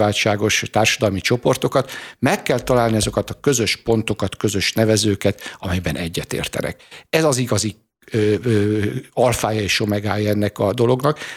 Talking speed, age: 125 wpm, 60-79